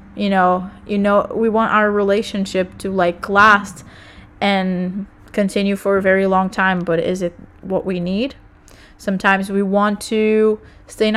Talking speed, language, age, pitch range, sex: 160 wpm, English, 20-39, 185-210 Hz, female